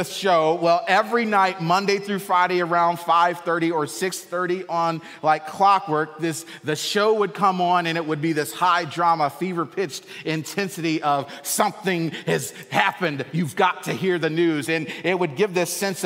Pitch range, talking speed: 160-190 Hz, 170 wpm